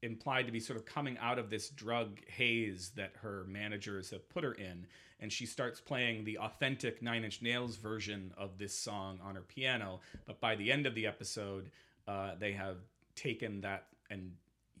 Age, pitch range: 30-49, 100-125 Hz